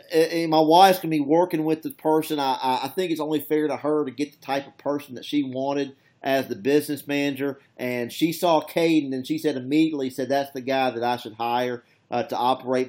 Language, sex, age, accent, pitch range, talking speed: English, male, 40-59, American, 120-145 Hz, 230 wpm